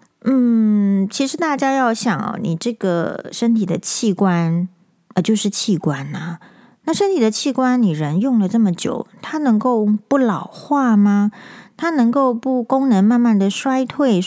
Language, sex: Chinese, female